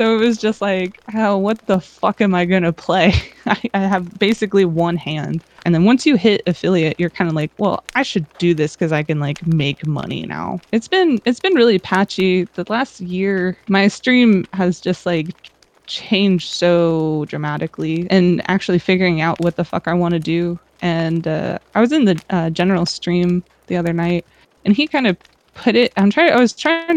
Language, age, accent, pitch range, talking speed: English, 20-39, American, 165-205 Hz, 205 wpm